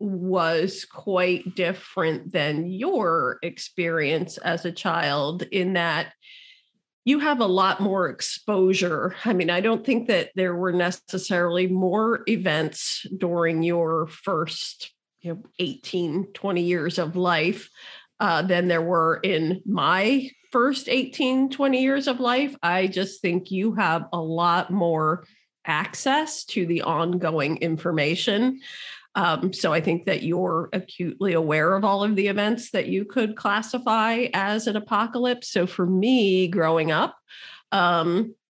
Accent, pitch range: American, 175-220 Hz